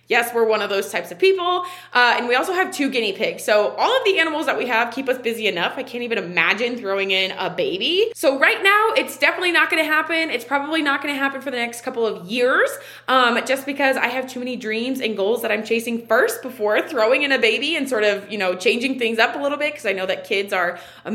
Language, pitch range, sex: English, 215-320 Hz, female